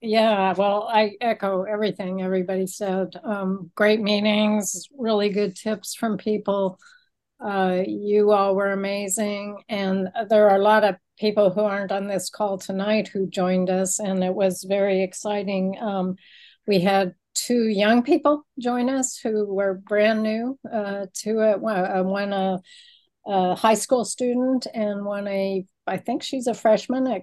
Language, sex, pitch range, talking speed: English, female, 195-225 Hz, 160 wpm